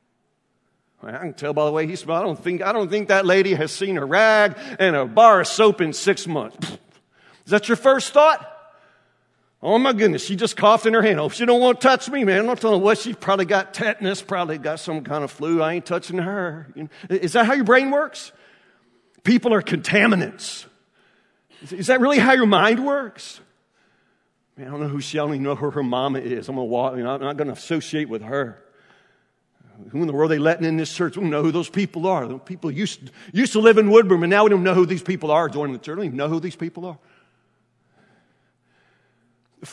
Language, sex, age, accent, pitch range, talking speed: English, male, 50-69, American, 145-210 Hz, 235 wpm